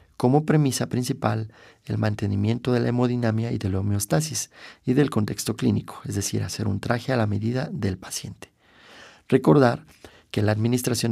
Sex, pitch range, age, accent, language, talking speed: male, 105-125 Hz, 40-59, Mexican, Spanish, 160 wpm